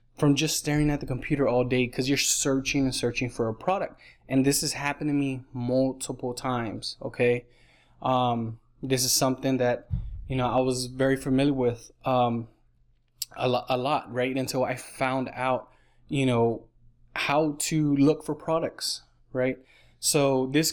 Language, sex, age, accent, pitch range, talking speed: English, male, 20-39, American, 120-145 Hz, 165 wpm